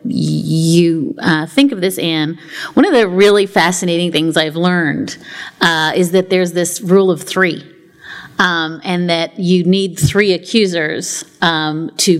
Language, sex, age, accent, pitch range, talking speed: English, female, 30-49, American, 160-185 Hz, 155 wpm